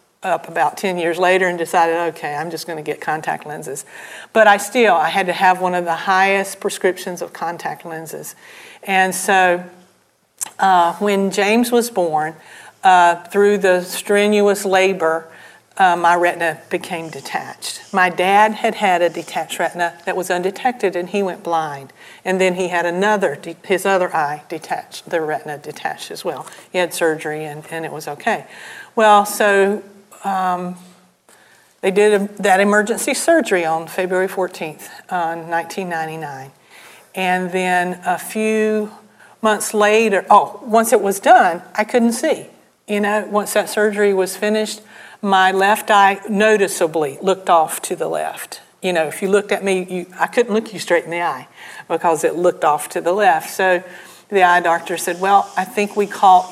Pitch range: 170-205 Hz